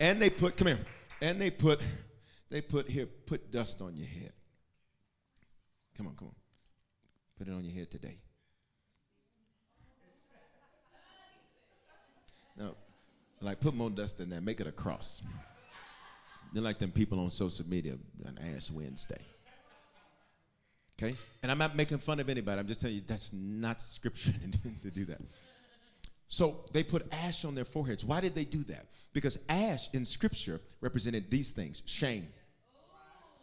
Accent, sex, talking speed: American, male, 155 wpm